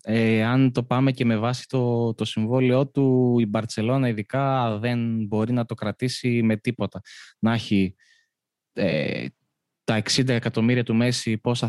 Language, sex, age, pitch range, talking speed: Greek, male, 20-39, 110-140 Hz, 155 wpm